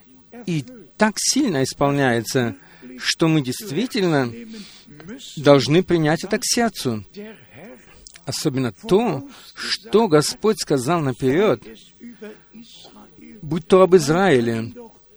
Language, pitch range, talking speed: Russian, 140-195 Hz, 85 wpm